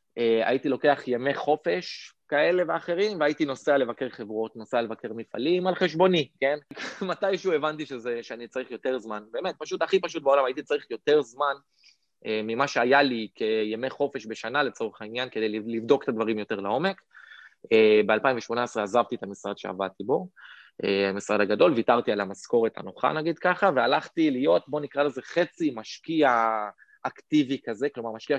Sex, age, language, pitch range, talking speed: male, 20-39, Hebrew, 110-155 Hz, 160 wpm